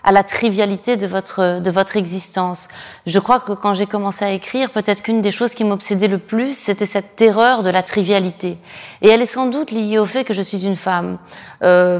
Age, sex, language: 30-49, female, English